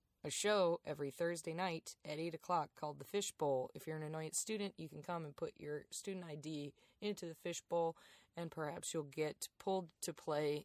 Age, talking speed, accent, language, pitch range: 20-39, 190 wpm, American, English, 145-180 Hz